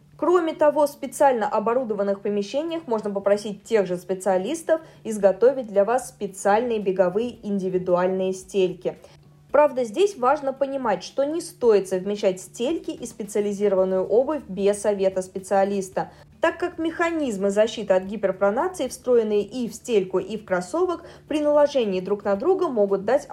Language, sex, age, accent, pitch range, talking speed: Russian, female, 20-39, native, 195-270 Hz, 135 wpm